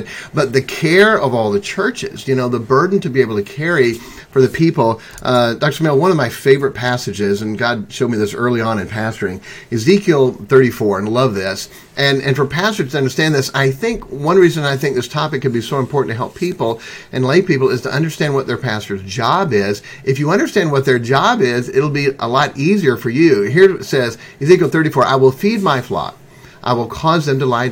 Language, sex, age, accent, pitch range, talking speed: English, male, 40-59, American, 120-160 Hz, 225 wpm